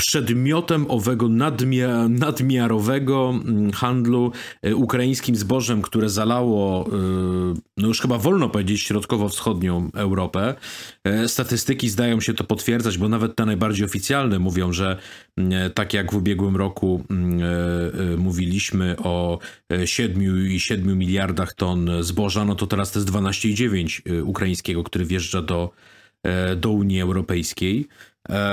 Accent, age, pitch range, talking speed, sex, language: native, 40-59, 95-120 Hz, 110 wpm, male, Polish